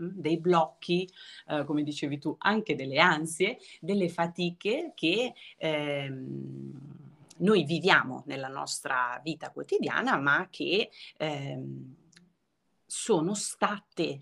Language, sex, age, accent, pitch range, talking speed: Italian, female, 30-49, native, 145-185 Hz, 100 wpm